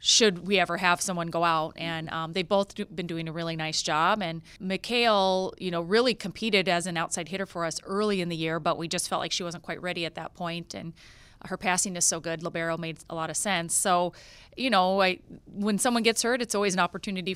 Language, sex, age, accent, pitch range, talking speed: English, female, 30-49, American, 165-200 Hz, 235 wpm